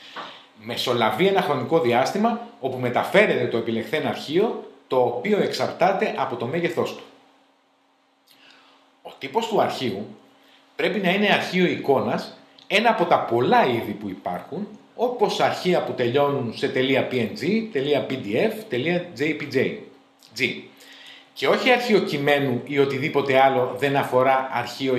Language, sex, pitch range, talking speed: Greek, male, 140-215 Hz, 120 wpm